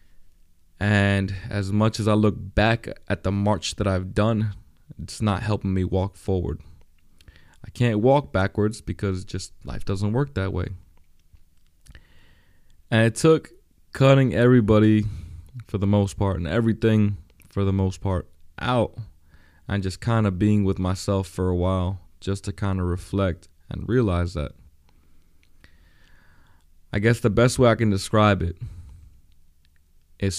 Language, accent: English, American